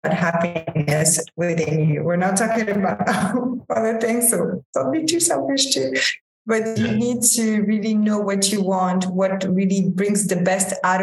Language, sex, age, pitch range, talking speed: English, female, 20-39, 175-210 Hz, 165 wpm